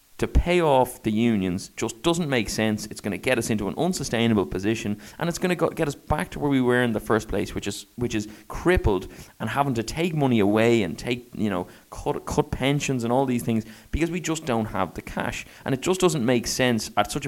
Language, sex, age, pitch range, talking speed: English, male, 20-39, 110-135 Hz, 245 wpm